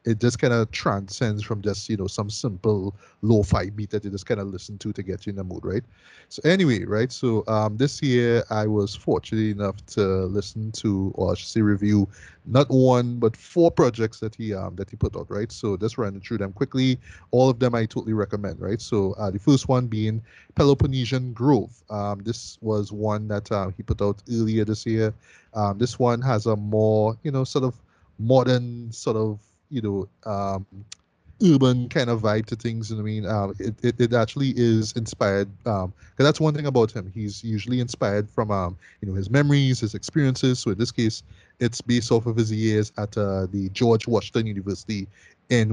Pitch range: 100-120 Hz